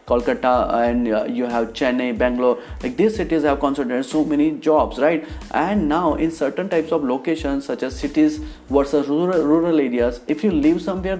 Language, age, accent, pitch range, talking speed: Hindi, 30-49, native, 125-165 Hz, 180 wpm